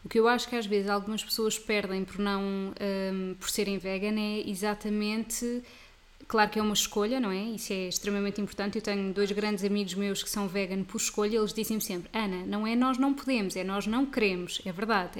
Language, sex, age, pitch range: Portuguese, female, 20-39, 205-230 Hz